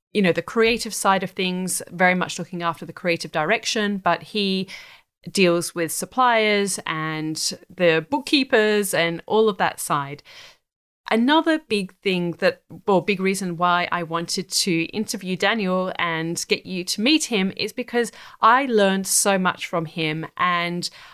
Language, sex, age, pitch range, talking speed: English, female, 30-49, 170-205 Hz, 155 wpm